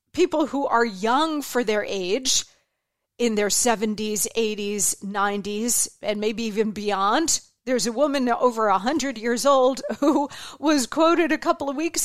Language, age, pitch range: English, 40-59, 220-290 Hz